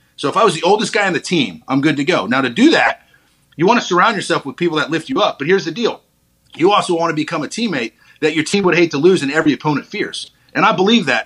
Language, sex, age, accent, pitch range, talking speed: English, male, 30-49, American, 130-190 Hz, 295 wpm